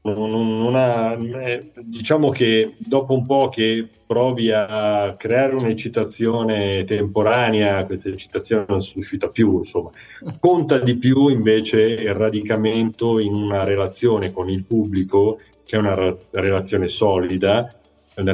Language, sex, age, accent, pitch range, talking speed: Italian, male, 40-59, native, 100-120 Hz, 120 wpm